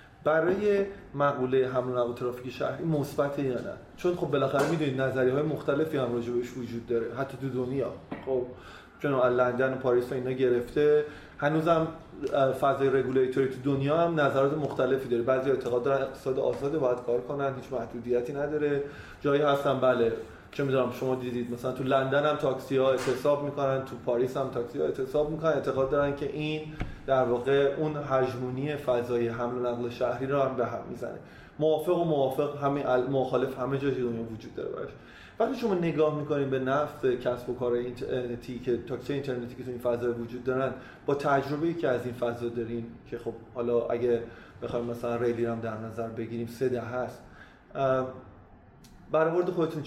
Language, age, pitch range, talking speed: Persian, 30-49, 120-145 Hz, 170 wpm